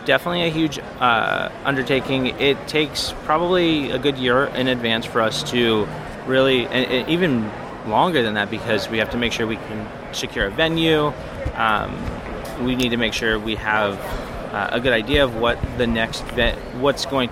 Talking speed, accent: 185 wpm, American